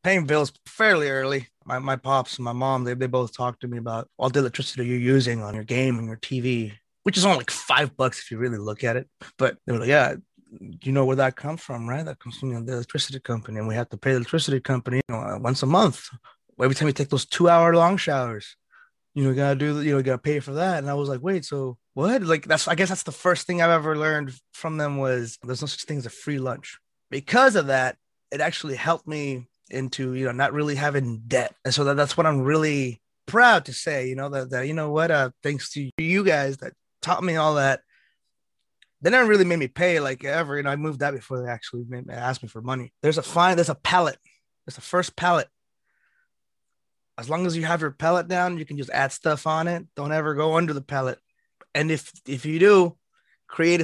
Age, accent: 20-39, American